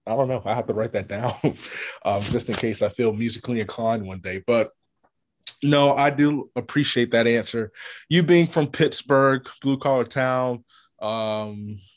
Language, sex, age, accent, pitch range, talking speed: English, male, 20-39, American, 110-135 Hz, 170 wpm